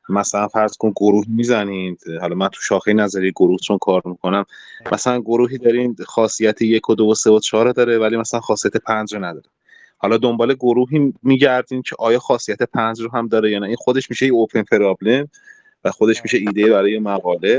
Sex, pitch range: male, 100-125 Hz